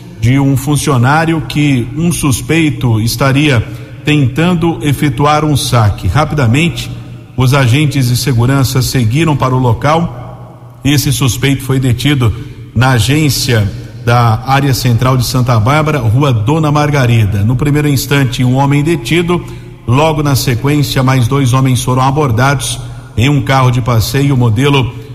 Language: Portuguese